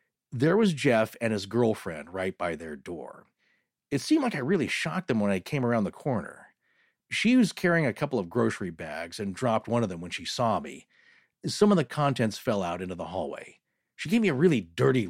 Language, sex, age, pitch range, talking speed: English, male, 40-59, 105-165 Hz, 220 wpm